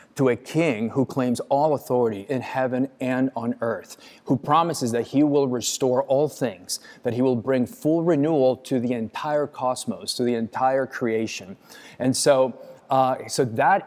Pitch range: 120-145 Hz